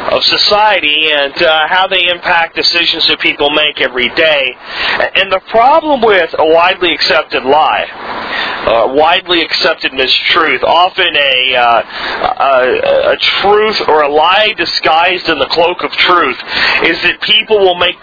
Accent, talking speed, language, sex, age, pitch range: American, 150 wpm, English, male, 40-59, 145-185 Hz